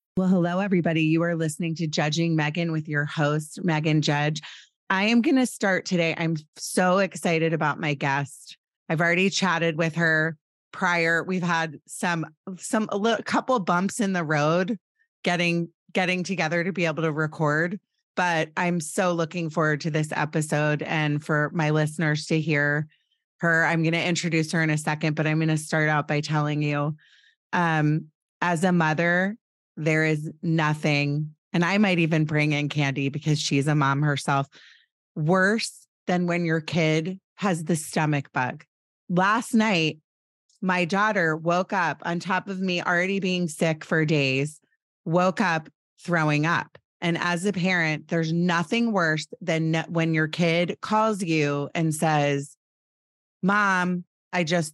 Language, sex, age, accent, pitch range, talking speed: English, female, 30-49, American, 155-185 Hz, 160 wpm